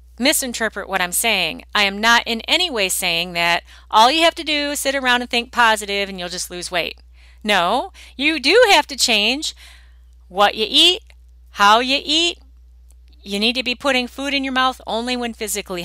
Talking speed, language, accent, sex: 195 wpm, English, American, female